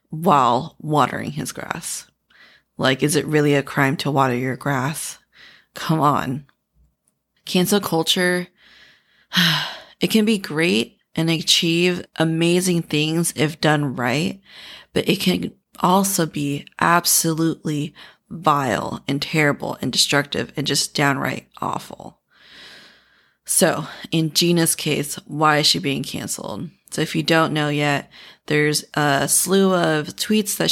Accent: American